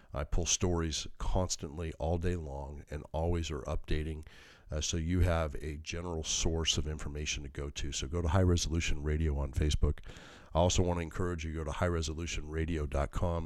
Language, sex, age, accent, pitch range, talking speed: English, male, 40-59, American, 75-90 Hz, 185 wpm